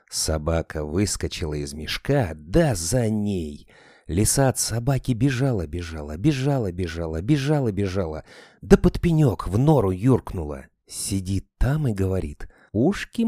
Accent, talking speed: native, 110 wpm